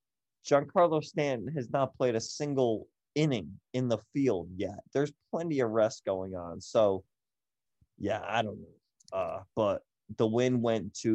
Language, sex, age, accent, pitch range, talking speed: English, male, 30-49, American, 100-115 Hz, 155 wpm